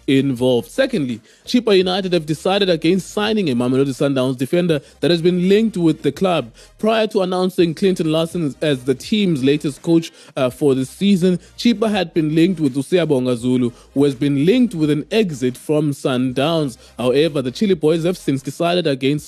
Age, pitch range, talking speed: 20-39, 130-175 Hz, 180 wpm